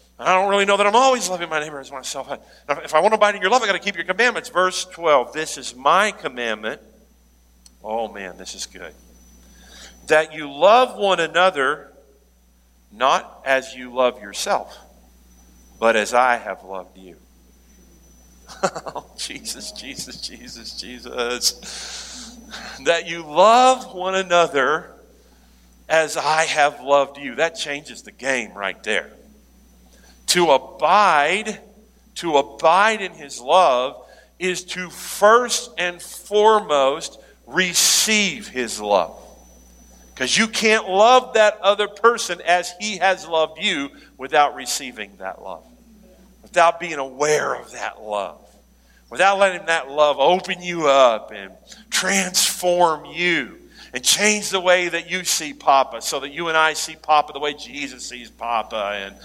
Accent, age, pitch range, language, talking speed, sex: American, 50-69, 120-190 Hz, English, 145 wpm, male